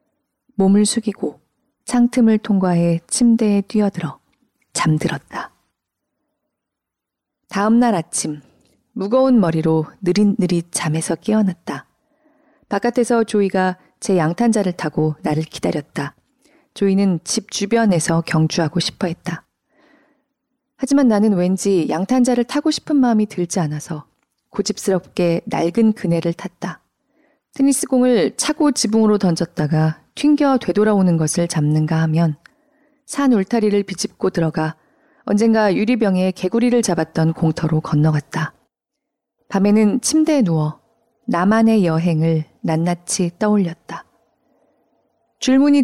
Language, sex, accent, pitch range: Korean, female, native, 170-240 Hz